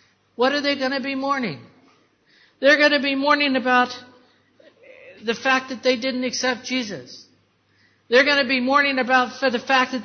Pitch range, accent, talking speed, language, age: 185-265 Hz, American, 175 wpm, English, 60-79